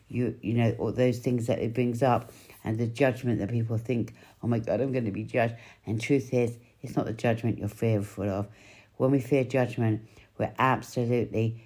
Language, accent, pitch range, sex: English, British, 105-125 Hz, female